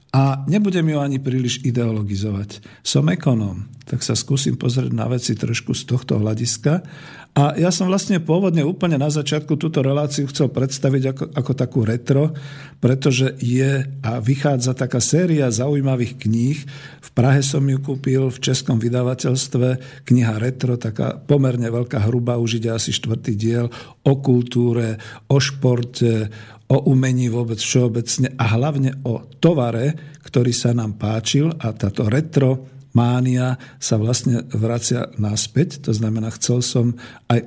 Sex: male